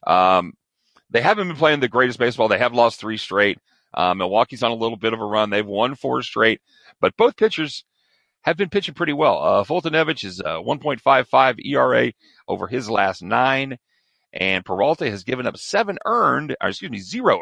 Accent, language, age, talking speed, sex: American, English, 40-59, 190 wpm, male